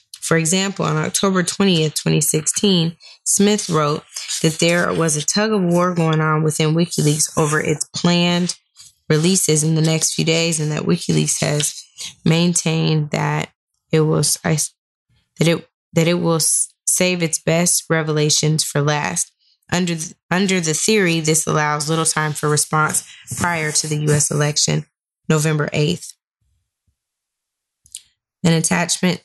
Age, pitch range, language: 10-29, 155-180 Hz, English